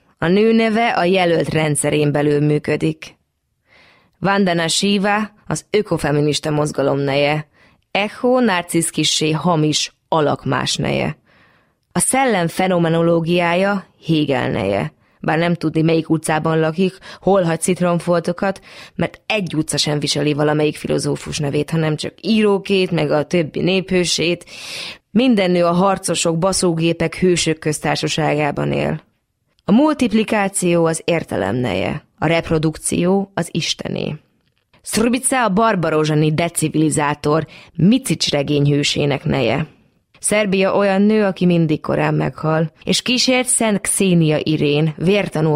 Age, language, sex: 20-39, Hungarian, female